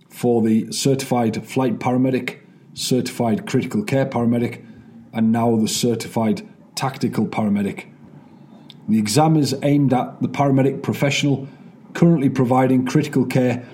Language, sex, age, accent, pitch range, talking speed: English, male, 30-49, British, 115-145 Hz, 120 wpm